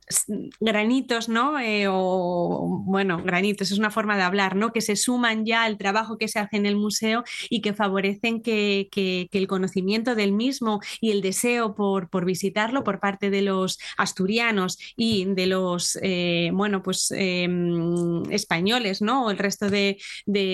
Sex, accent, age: female, Spanish, 20-39